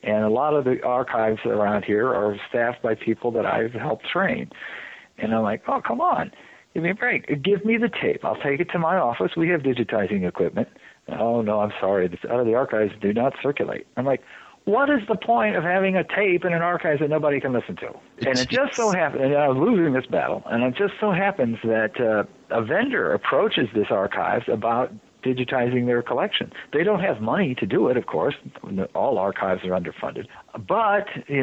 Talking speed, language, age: 210 wpm, English, 50-69